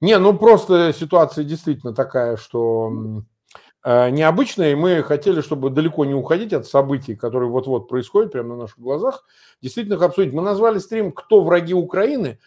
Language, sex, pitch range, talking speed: Russian, male, 125-185 Hz, 165 wpm